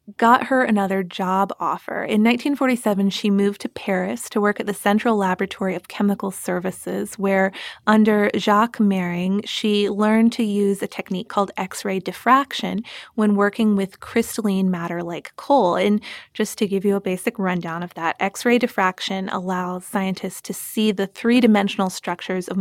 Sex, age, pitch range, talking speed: female, 20-39, 190-220 Hz, 160 wpm